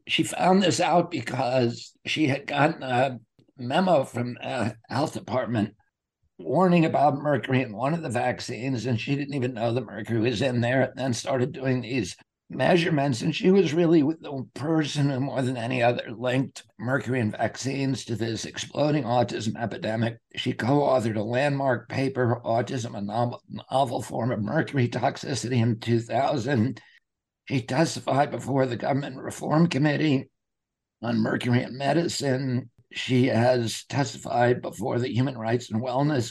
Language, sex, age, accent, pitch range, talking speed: English, male, 60-79, American, 120-140 Hz, 155 wpm